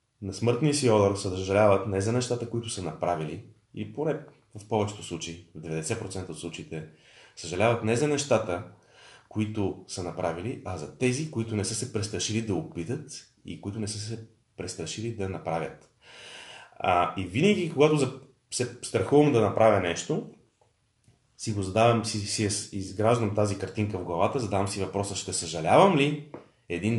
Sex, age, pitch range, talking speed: male, 30-49, 95-120 Hz, 160 wpm